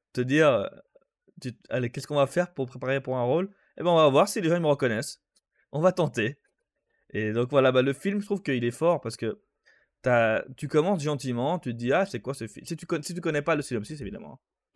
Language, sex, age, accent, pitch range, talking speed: French, male, 20-39, French, 120-175 Hz, 250 wpm